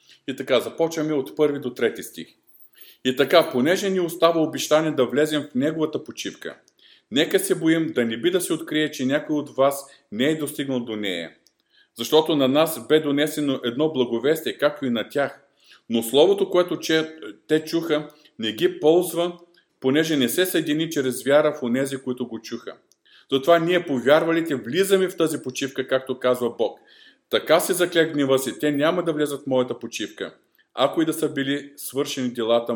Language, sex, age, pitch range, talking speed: Bulgarian, male, 50-69, 130-165 Hz, 175 wpm